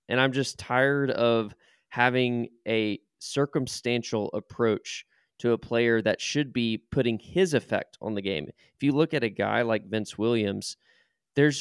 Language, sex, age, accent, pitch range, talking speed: English, male, 20-39, American, 105-130 Hz, 160 wpm